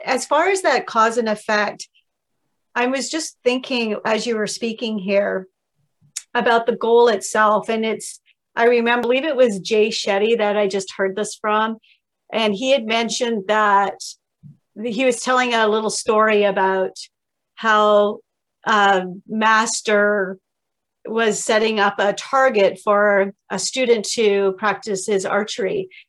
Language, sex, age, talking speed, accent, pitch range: English, female, 40-59, 145 wpm, American, 200-235 Hz